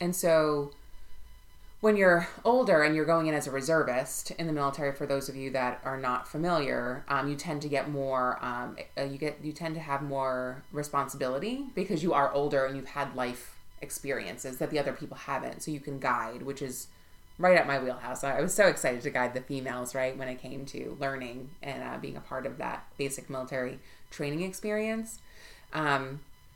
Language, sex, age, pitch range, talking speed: English, female, 20-39, 130-160 Hz, 195 wpm